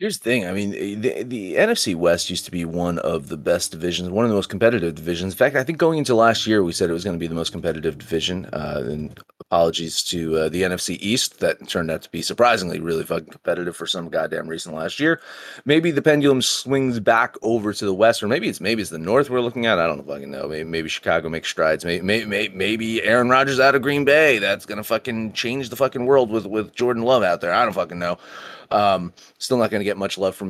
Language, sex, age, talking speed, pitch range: English, male, 30-49, 255 wpm, 90-130 Hz